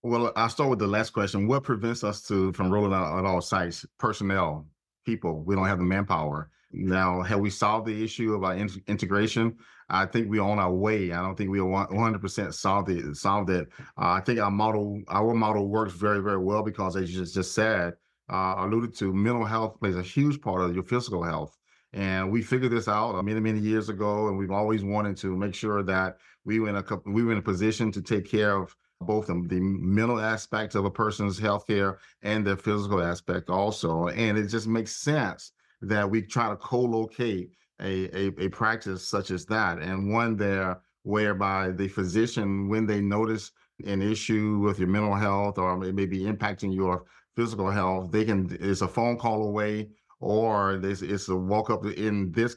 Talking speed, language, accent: 205 wpm, English, American